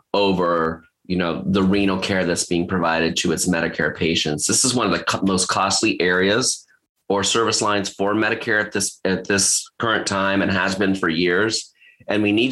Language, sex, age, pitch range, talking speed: English, male, 30-49, 85-100 Hz, 175 wpm